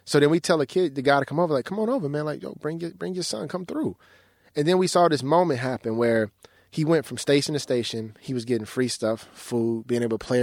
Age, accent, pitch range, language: 20-39, American, 115-150 Hz, English